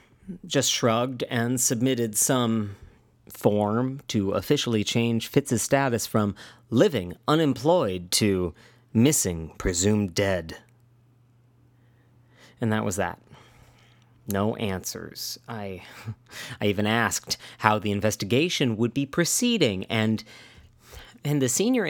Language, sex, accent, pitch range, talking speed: English, male, American, 110-135 Hz, 105 wpm